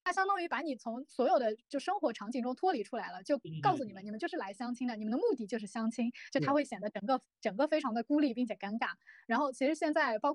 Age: 20-39